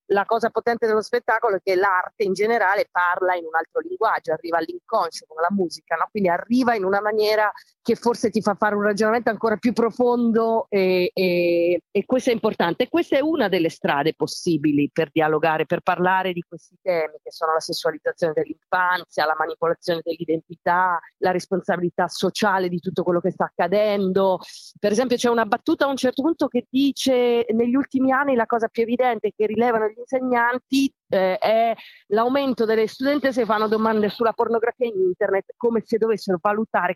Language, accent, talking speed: Italian, native, 180 wpm